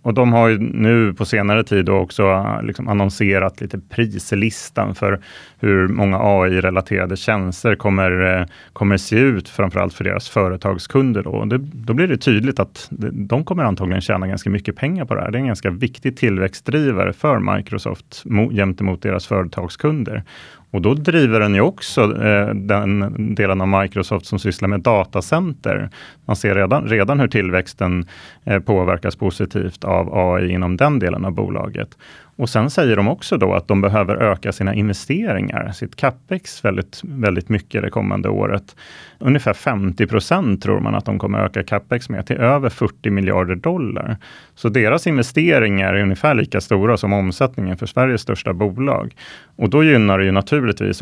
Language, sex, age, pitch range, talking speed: Swedish, male, 30-49, 95-115 Hz, 165 wpm